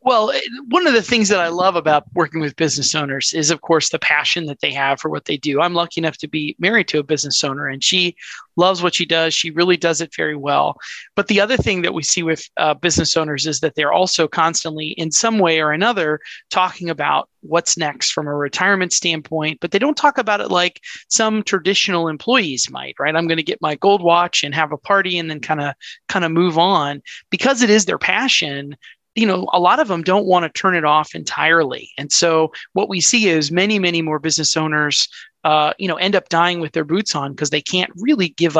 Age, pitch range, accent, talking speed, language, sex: 30-49, 155-190 Hz, American, 235 wpm, English, male